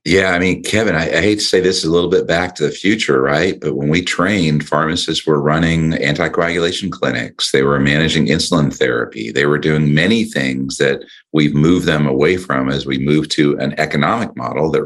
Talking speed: 210 wpm